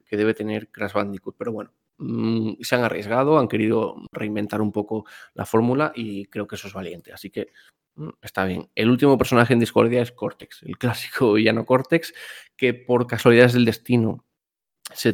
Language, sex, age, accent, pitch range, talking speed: English, male, 20-39, Spanish, 110-125 Hz, 180 wpm